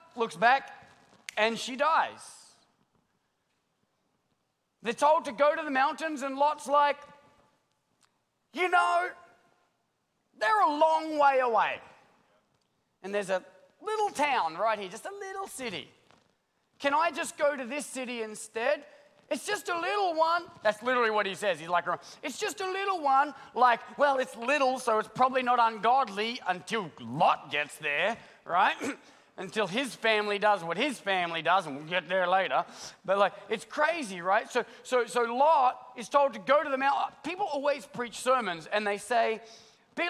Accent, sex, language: Australian, male, English